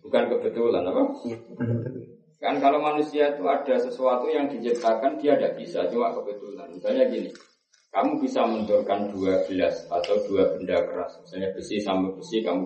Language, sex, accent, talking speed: Indonesian, male, native, 145 wpm